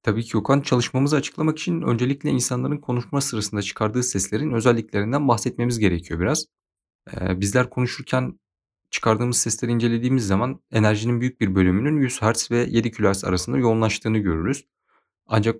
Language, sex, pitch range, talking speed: Turkish, male, 95-120 Hz, 135 wpm